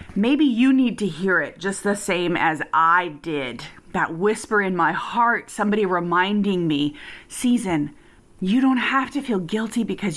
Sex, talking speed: female, 165 wpm